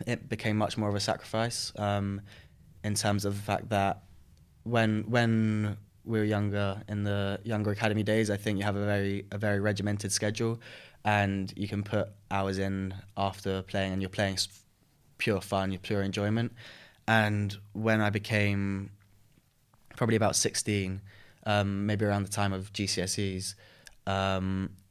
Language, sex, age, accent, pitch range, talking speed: English, male, 10-29, British, 95-105 Hz, 160 wpm